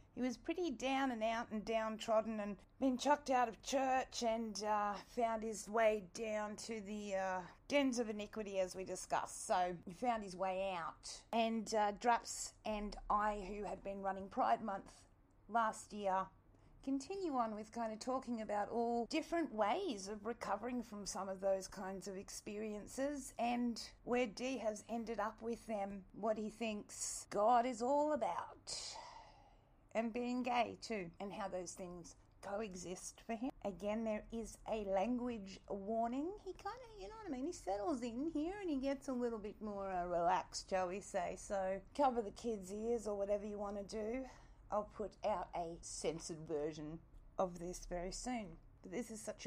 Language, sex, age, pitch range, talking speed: English, female, 40-59, 190-235 Hz, 180 wpm